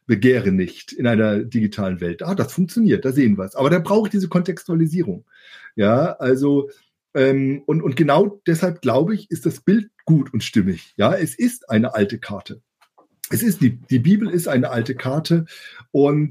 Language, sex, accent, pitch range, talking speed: German, male, German, 125-170 Hz, 185 wpm